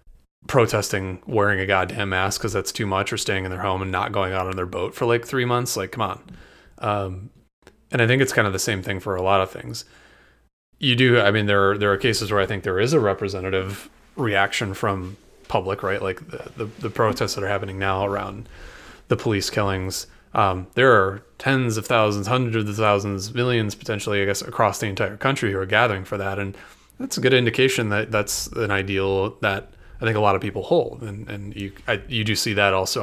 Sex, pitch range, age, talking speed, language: male, 95-120 Hz, 30-49, 225 wpm, English